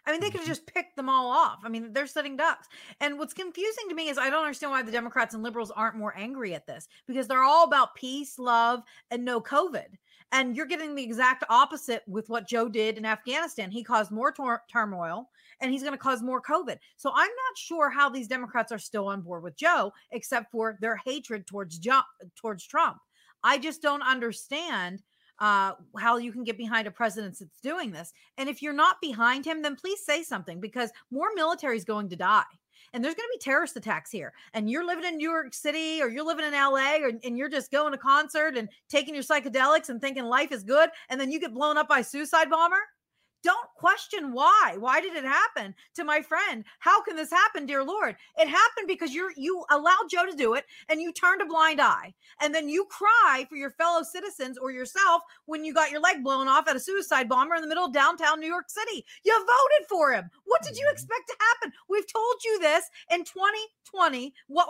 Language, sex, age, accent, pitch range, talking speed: English, female, 30-49, American, 240-335 Hz, 225 wpm